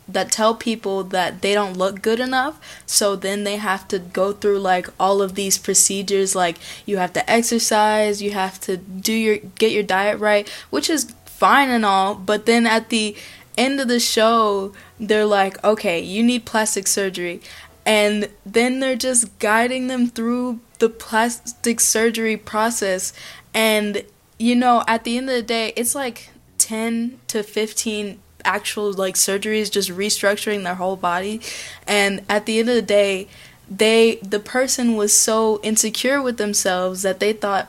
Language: English